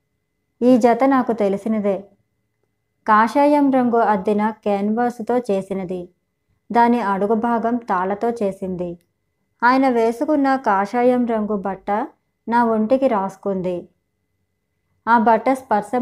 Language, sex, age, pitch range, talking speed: Telugu, male, 20-39, 200-245 Hz, 95 wpm